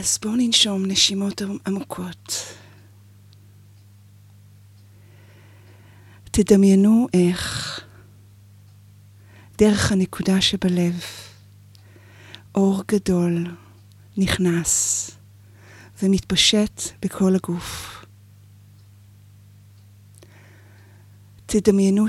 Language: Hebrew